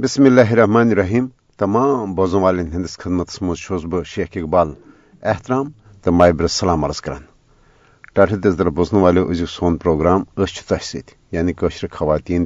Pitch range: 85-110 Hz